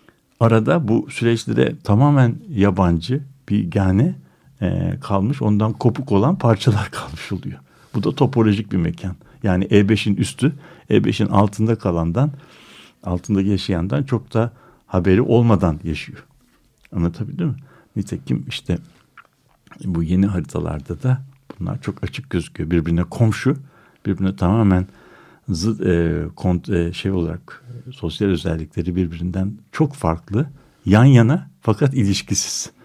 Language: Turkish